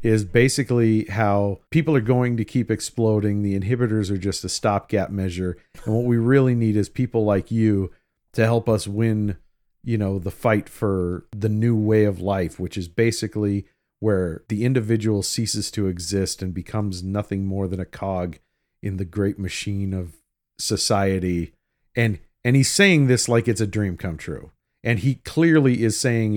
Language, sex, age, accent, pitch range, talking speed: English, male, 50-69, American, 95-120 Hz, 175 wpm